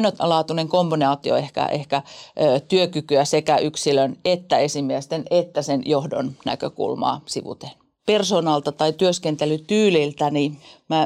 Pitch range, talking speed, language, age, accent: 145-175 Hz, 105 wpm, Finnish, 40-59, native